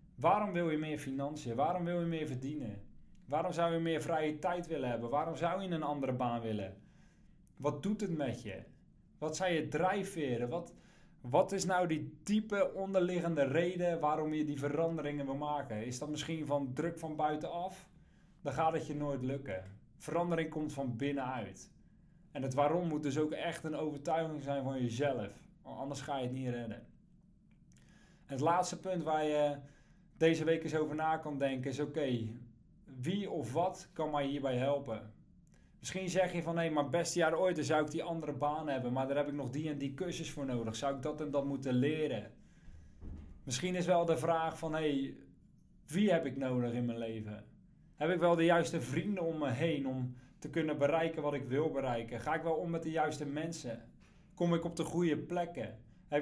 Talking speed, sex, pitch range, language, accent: 200 wpm, male, 135-170 Hz, Dutch, Dutch